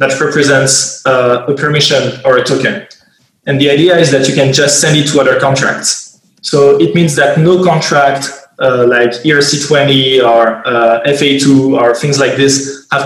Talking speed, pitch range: 175 wpm, 125-145 Hz